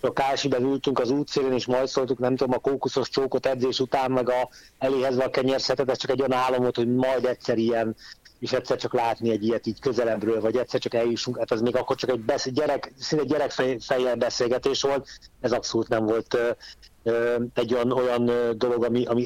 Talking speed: 195 wpm